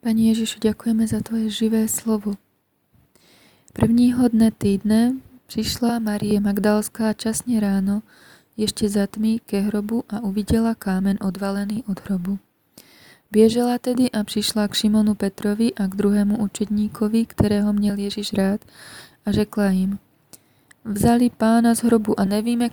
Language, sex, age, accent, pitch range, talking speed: Czech, female, 20-39, native, 200-225 Hz, 130 wpm